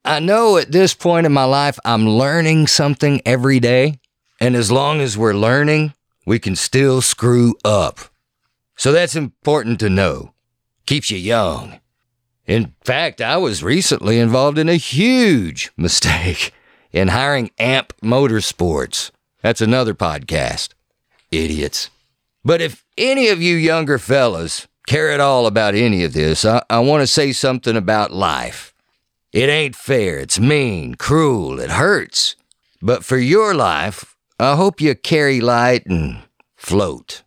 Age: 50-69